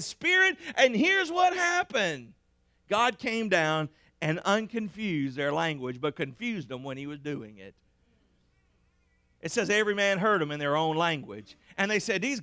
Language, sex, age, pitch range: English, male, 50-69, 165-265 Hz